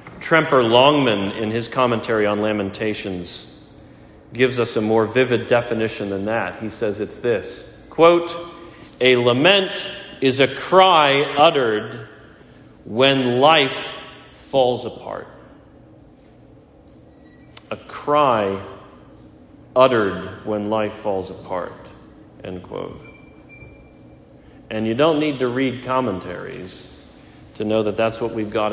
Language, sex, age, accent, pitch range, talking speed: English, male, 40-59, American, 110-145 Hz, 110 wpm